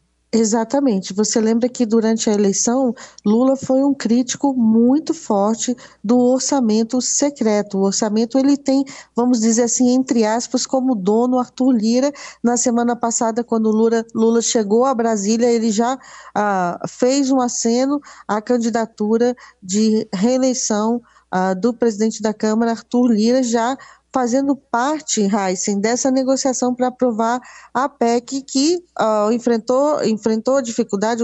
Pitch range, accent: 220-265 Hz, Brazilian